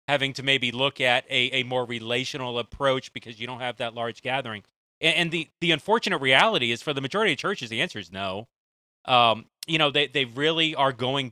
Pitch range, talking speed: 120-160 Hz, 215 wpm